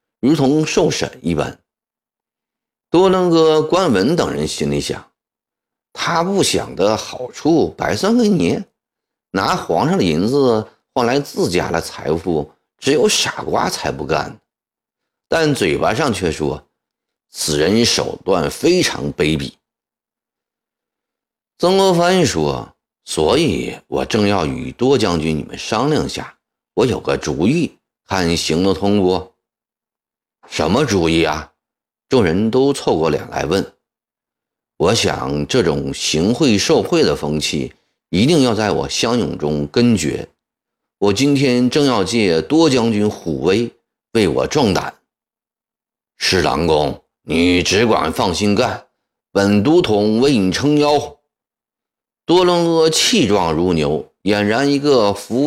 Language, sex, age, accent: Chinese, male, 50-69, native